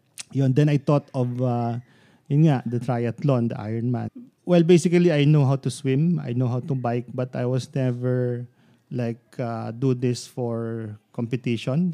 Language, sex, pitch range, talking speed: English, male, 120-140 Hz, 170 wpm